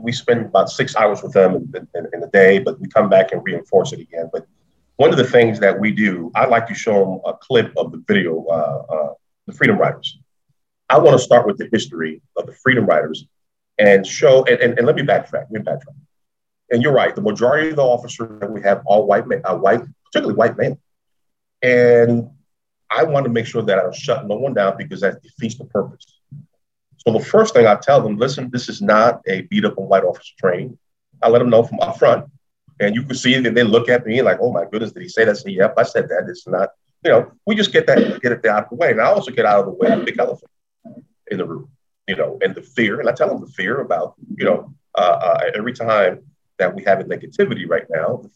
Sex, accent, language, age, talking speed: male, American, English, 40-59, 250 wpm